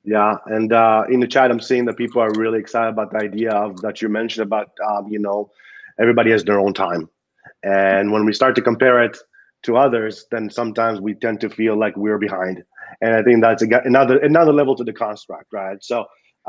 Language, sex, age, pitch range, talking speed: English, male, 30-49, 110-135 Hz, 220 wpm